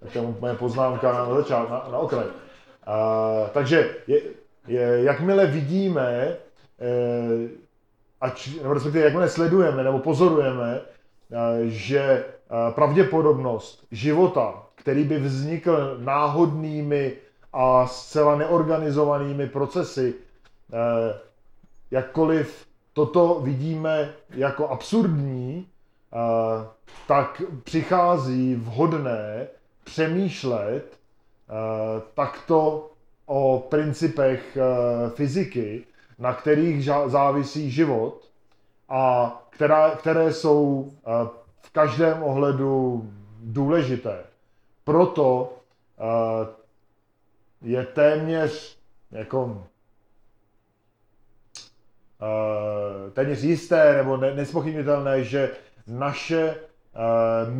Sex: male